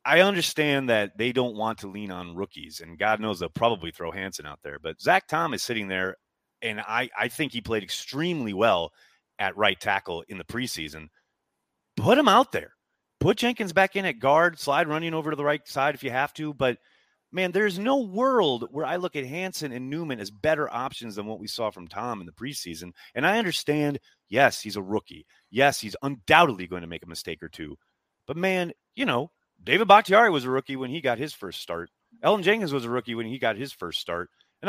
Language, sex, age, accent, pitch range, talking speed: English, male, 30-49, American, 115-160 Hz, 220 wpm